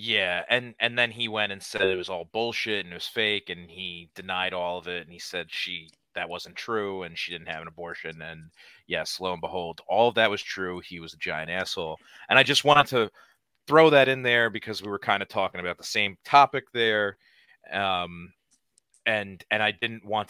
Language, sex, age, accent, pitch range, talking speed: English, male, 30-49, American, 95-125 Hz, 230 wpm